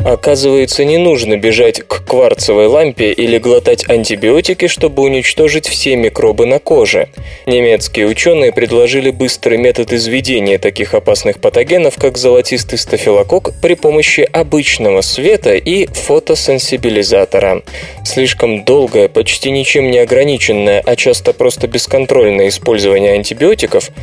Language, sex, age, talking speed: Russian, male, 20-39, 115 wpm